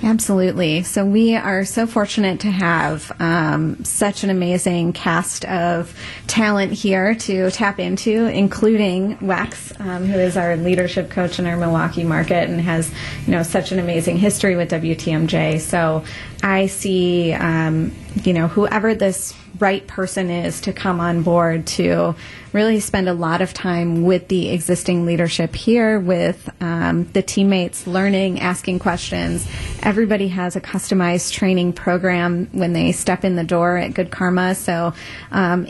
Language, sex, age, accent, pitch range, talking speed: English, female, 30-49, American, 170-200 Hz, 155 wpm